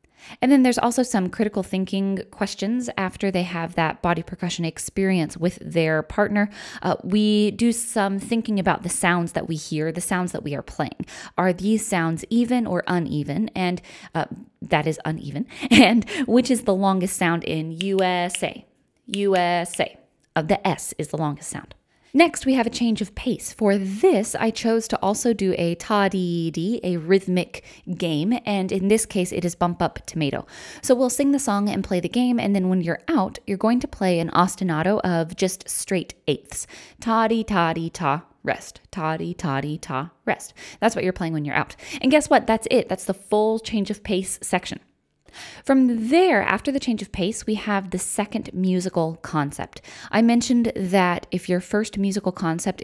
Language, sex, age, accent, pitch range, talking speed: English, female, 20-39, American, 170-215 Hz, 185 wpm